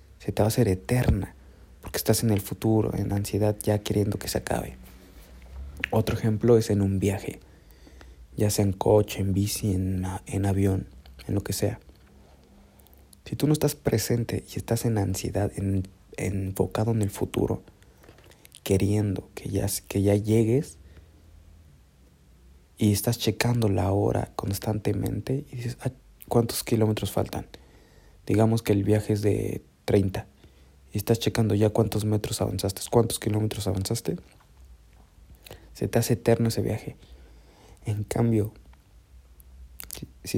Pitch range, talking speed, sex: 80-110 Hz, 140 wpm, male